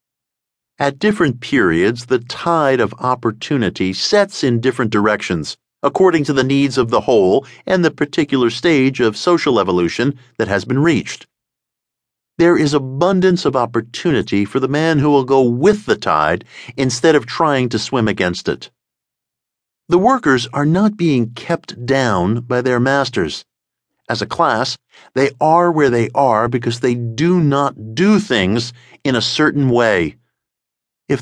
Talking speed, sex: 150 wpm, male